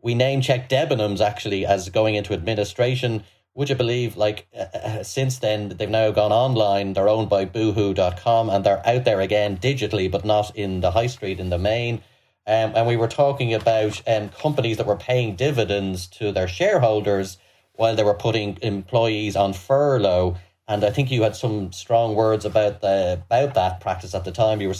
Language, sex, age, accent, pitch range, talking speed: English, male, 30-49, Irish, 100-130 Hz, 190 wpm